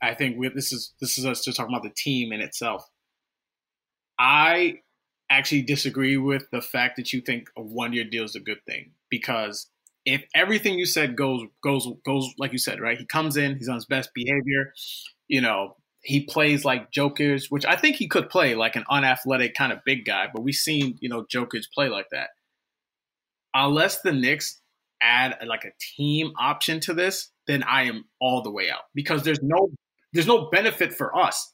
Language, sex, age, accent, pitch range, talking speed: English, male, 30-49, American, 125-155 Hz, 200 wpm